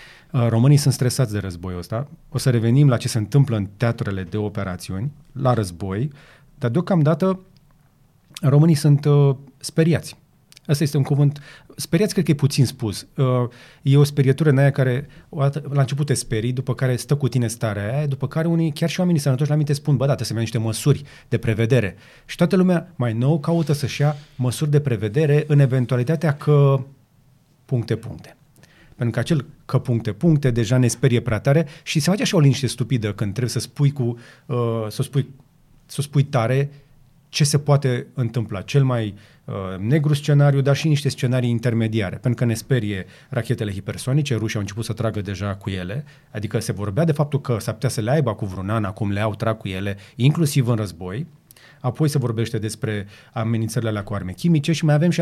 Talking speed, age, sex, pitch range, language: 190 wpm, 30-49, male, 115-145 Hz, Romanian